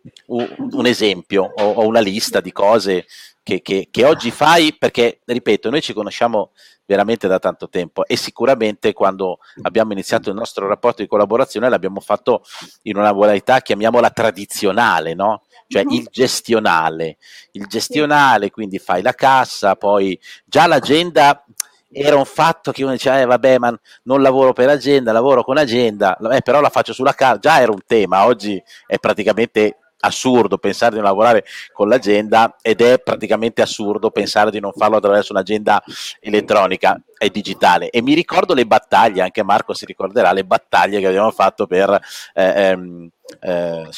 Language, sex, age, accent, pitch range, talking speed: Italian, male, 40-59, native, 100-125 Hz, 160 wpm